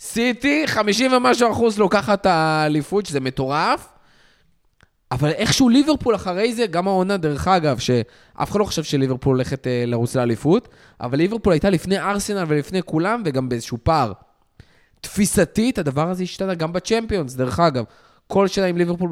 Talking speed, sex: 160 wpm, male